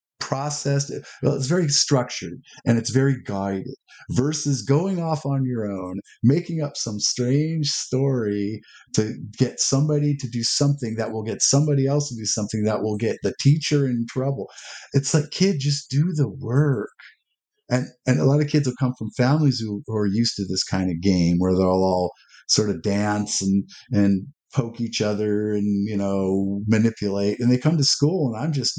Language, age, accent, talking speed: English, 50-69, American, 185 wpm